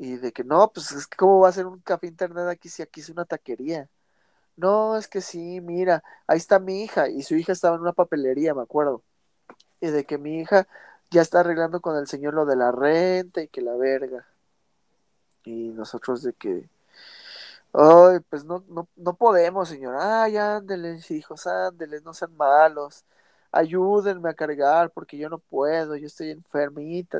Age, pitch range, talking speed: 20-39, 145-190 Hz, 190 wpm